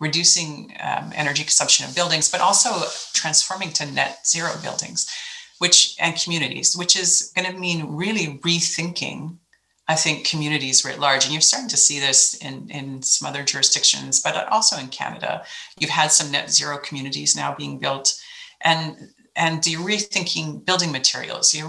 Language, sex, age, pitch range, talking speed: English, female, 40-59, 135-170 Hz, 165 wpm